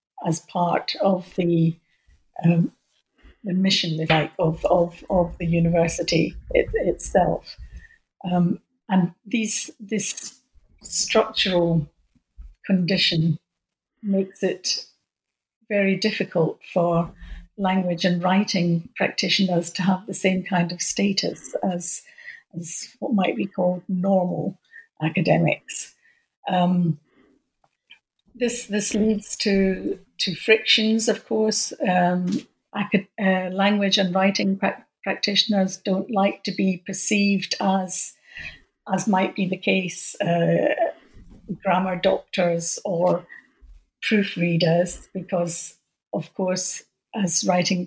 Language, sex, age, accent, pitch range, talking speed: English, female, 60-79, British, 175-205 Hz, 100 wpm